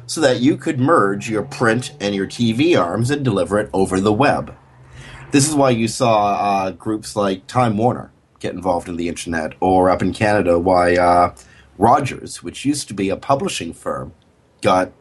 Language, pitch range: English, 100-135 Hz